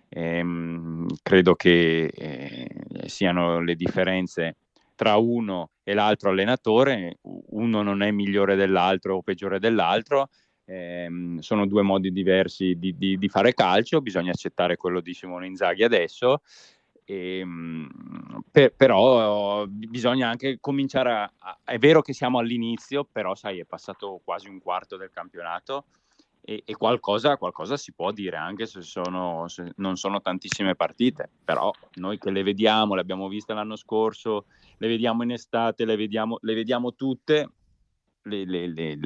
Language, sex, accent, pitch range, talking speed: Italian, male, native, 90-110 Hz, 140 wpm